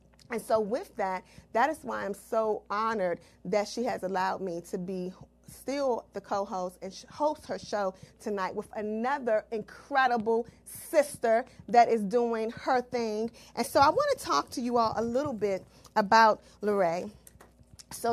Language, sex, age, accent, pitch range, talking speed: English, female, 40-59, American, 205-250 Hz, 160 wpm